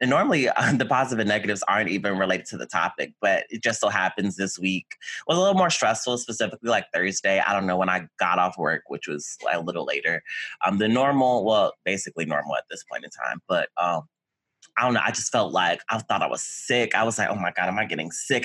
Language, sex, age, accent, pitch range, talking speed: English, male, 20-39, American, 100-125 Hz, 245 wpm